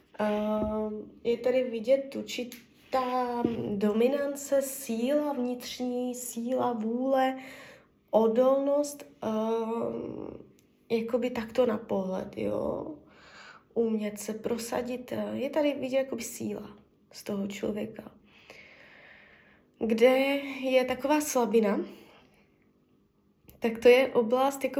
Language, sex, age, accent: Czech, female, 20-39, native